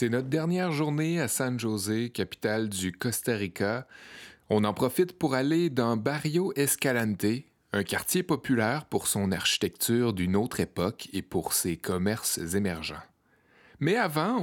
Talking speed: 145 wpm